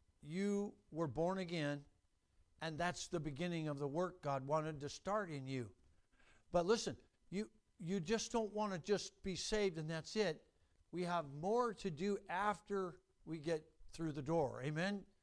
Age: 60-79